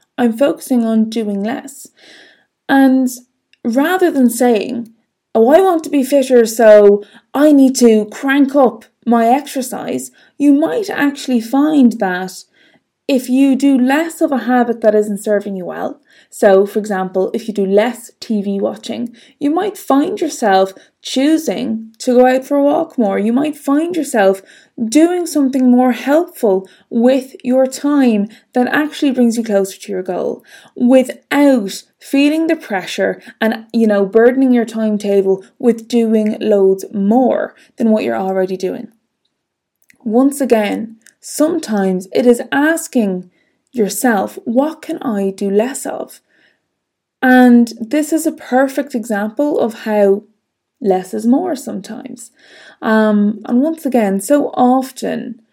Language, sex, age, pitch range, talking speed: English, female, 20-39, 215-275 Hz, 140 wpm